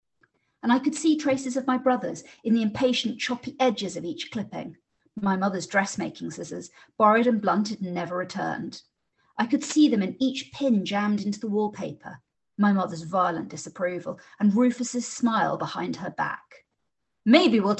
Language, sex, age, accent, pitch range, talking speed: English, female, 40-59, British, 200-255 Hz, 165 wpm